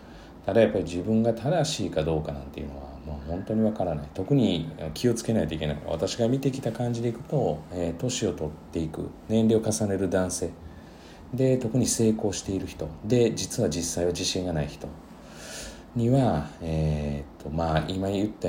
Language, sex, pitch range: Japanese, male, 80-115 Hz